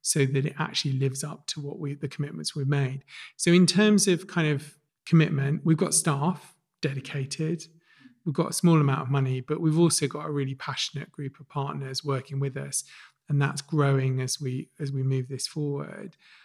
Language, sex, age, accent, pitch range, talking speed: English, male, 40-59, British, 140-165 Hz, 195 wpm